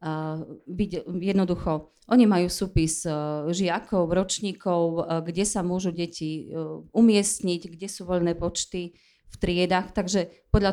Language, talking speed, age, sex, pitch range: Slovak, 110 wpm, 30-49, female, 165-190 Hz